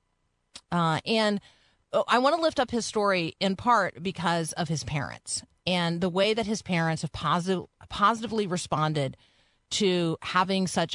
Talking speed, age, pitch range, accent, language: 155 wpm, 40-59, 155-195 Hz, American, English